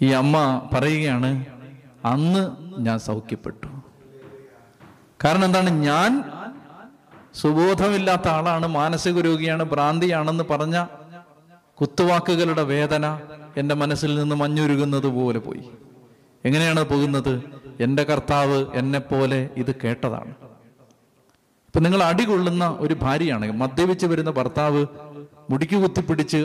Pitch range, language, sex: 135-170 Hz, Malayalam, male